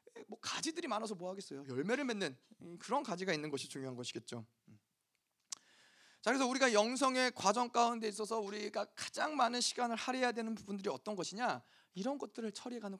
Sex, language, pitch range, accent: male, Korean, 175-255 Hz, native